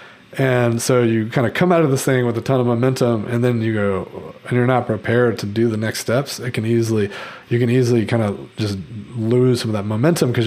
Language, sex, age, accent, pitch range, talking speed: English, male, 30-49, American, 110-130 Hz, 245 wpm